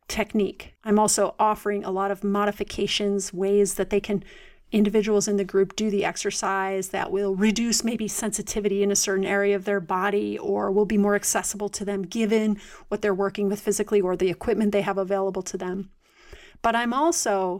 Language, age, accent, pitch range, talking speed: English, 30-49, American, 200-230 Hz, 190 wpm